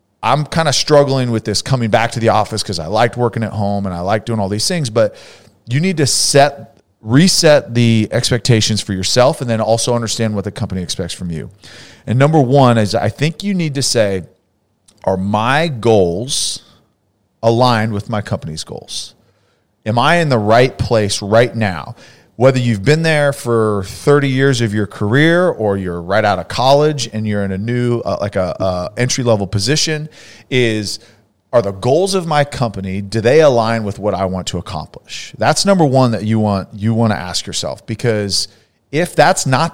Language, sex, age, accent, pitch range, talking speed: English, male, 40-59, American, 105-135 Hz, 195 wpm